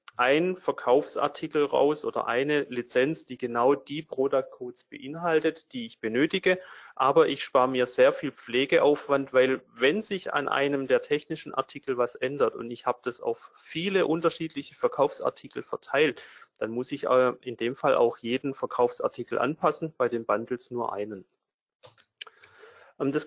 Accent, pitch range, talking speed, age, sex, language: German, 125-145 Hz, 145 wpm, 40-59, male, German